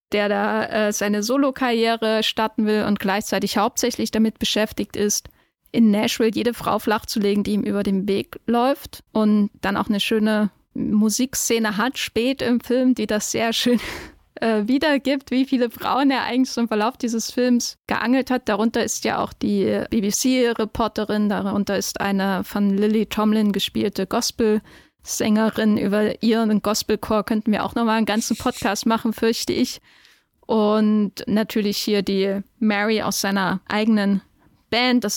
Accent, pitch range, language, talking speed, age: German, 210-240 Hz, German, 150 wpm, 10-29